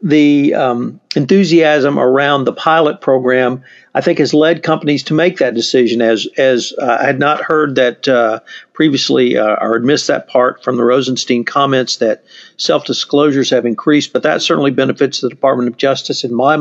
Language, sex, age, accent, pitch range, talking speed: English, male, 50-69, American, 135-180 Hz, 180 wpm